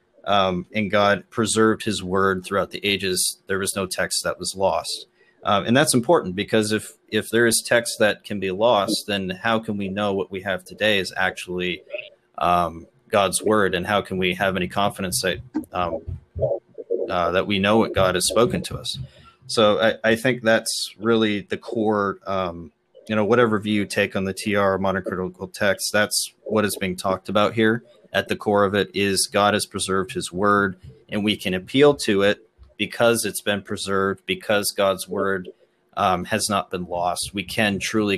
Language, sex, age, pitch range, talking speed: English, male, 30-49, 95-110 Hz, 195 wpm